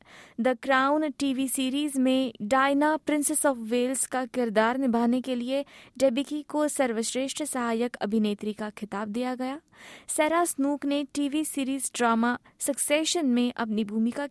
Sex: female